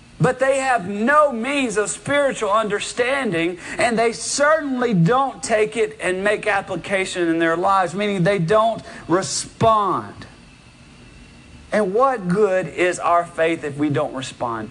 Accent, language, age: American, English, 40-59